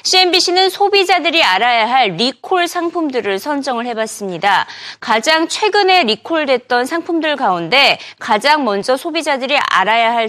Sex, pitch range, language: female, 215-335 Hz, Korean